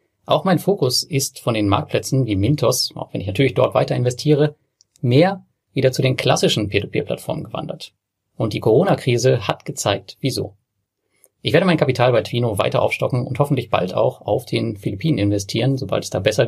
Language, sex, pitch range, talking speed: German, male, 105-145 Hz, 190 wpm